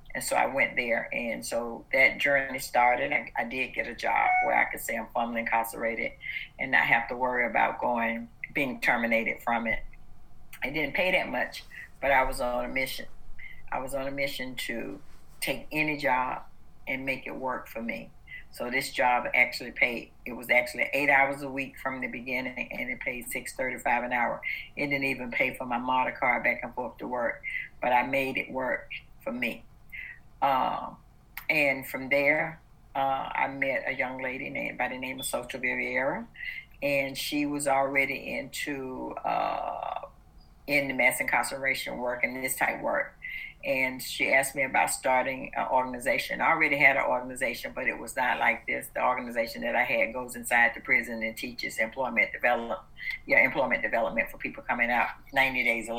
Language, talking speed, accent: English, 190 wpm, American